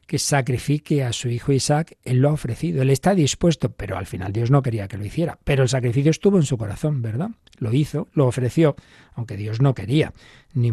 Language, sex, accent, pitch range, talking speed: Spanish, male, Spanish, 130-165 Hz, 220 wpm